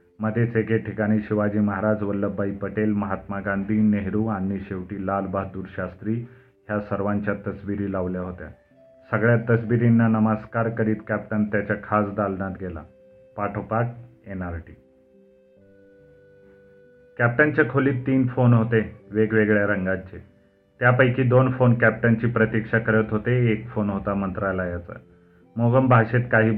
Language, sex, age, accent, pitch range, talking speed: Marathi, male, 40-59, native, 100-115 Hz, 115 wpm